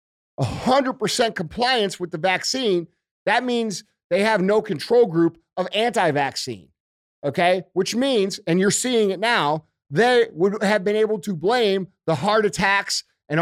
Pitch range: 165-225 Hz